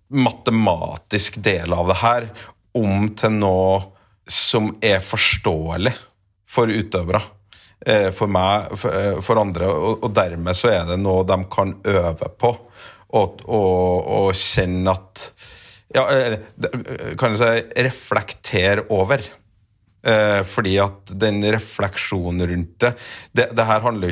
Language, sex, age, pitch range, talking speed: English, male, 30-49, 95-110 Hz, 125 wpm